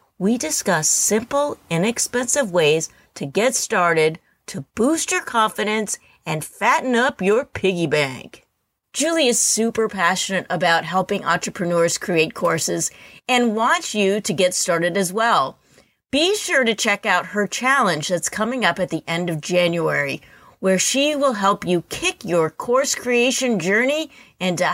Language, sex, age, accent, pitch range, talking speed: English, female, 40-59, American, 180-245 Hz, 150 wpm